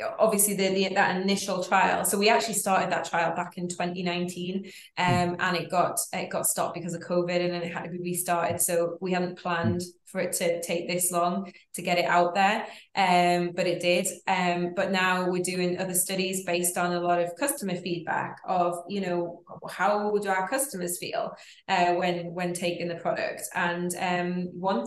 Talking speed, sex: 200 wpm, female